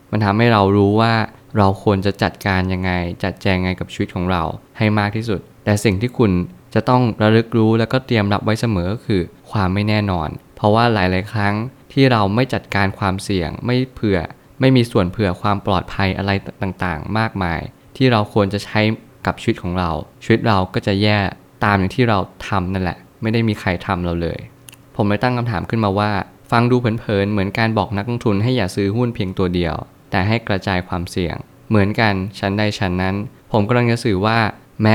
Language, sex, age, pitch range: Thai, male, 20-39, 95-115 Hz